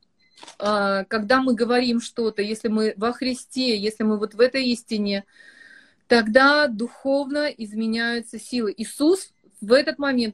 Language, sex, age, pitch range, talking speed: Russian, female, 30-49, 215-250 Hz, 130 wpm